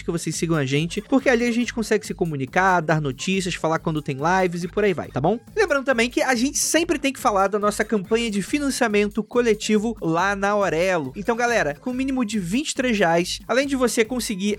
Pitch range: 180-230 Hz